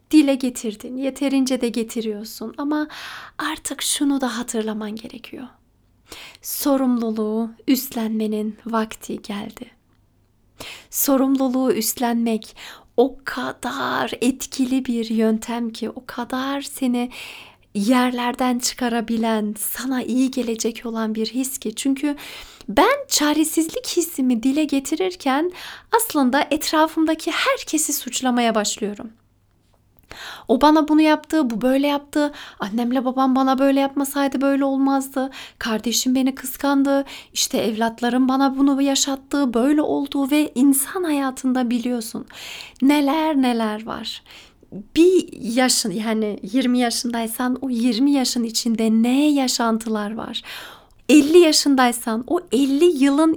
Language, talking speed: Turkish, 105 wpm